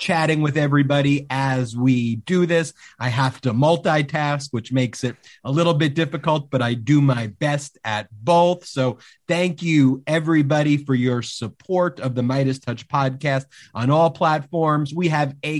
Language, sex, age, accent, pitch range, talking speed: English, male, 30-49, American, 130-165 Hz, 165 wpm